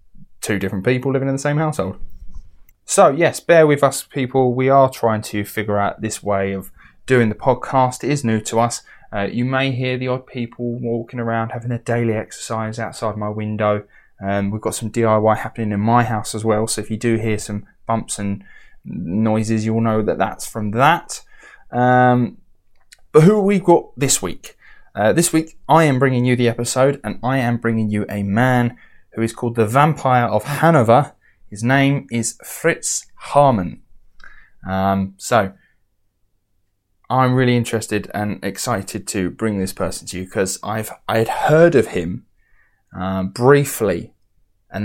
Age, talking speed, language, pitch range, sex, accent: 20-39, 180 wpm, English, 100-130 Hz, male, British